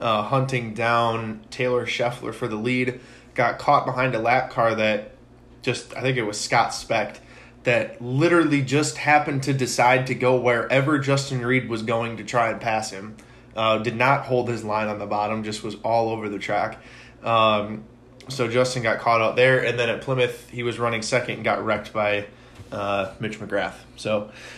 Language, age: English, 20-39